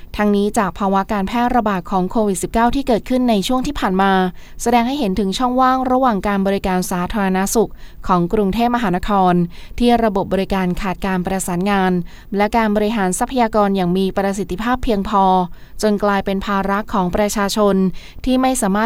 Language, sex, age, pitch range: Thai, female, 20-39, 185-220 Hz